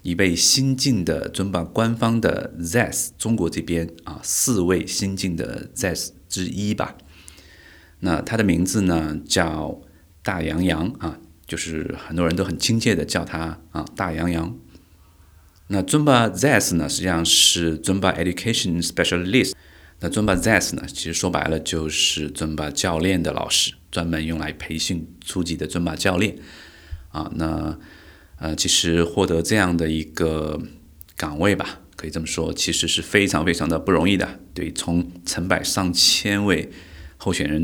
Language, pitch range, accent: Chinese, 80-90 Hz, native